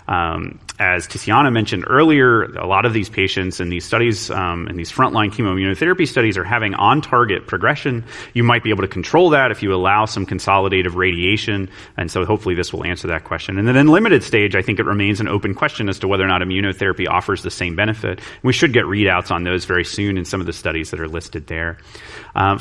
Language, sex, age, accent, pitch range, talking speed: English, male, 30-49, American, 95-115 Hz, 225 wpm